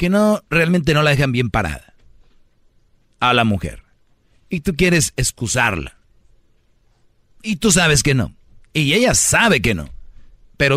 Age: 40-59